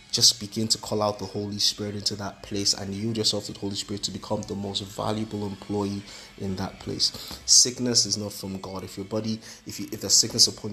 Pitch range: 100-110 Hz